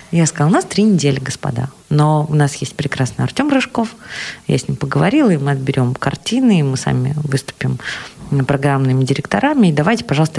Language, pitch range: Russian, 135-180 Hz